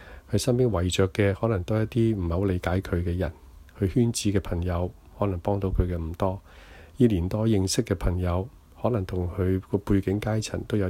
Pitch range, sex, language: 85-100 Hz, male, Chinese